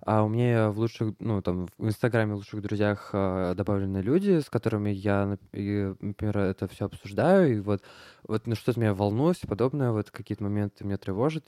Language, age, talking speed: Russian, 20-39, 190 wpm